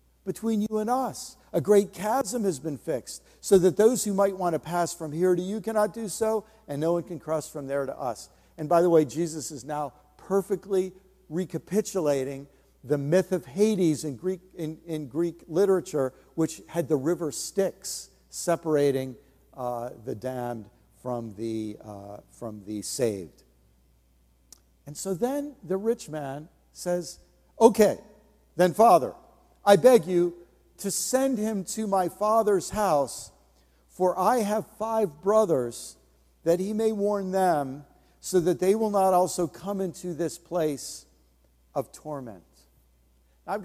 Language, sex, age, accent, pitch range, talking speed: English, male, 50-69, American, 140-195 Hz, 150 wpm